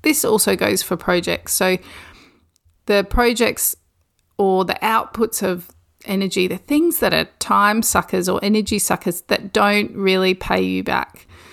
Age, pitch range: 30-49, 175-210 Hz